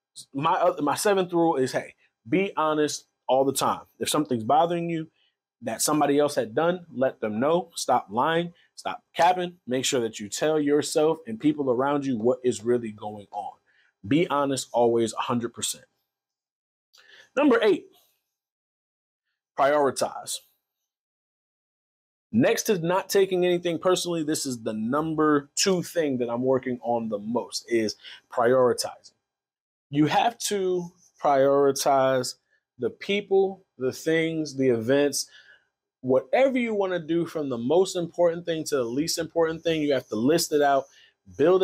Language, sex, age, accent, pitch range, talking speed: English, male, 30-49, American, 125-170 Hz, 145 wpm